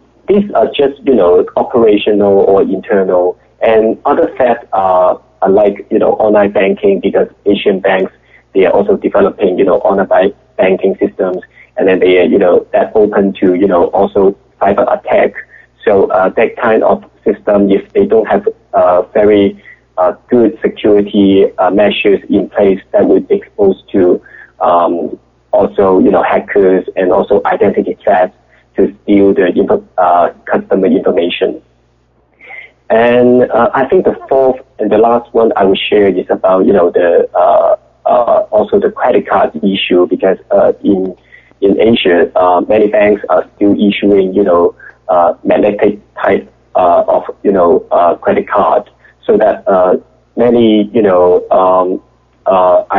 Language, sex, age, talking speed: English, male, 30-49, 155 wpm